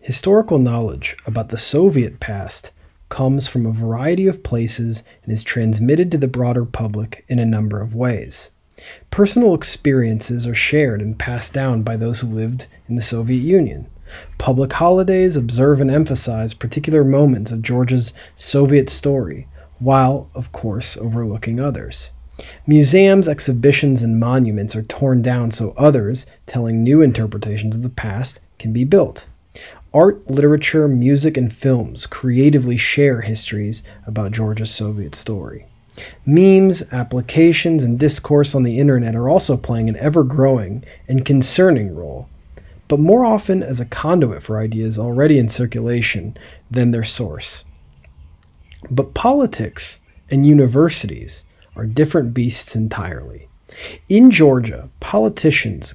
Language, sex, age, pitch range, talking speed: English, male, 30-49, 110-140 Hz, 135 wpm